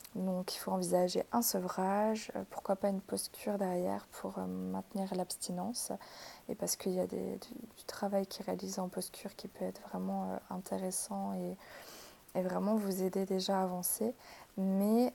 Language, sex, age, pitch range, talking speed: French, female, 20-39, 185-215 Hz, 165 wpm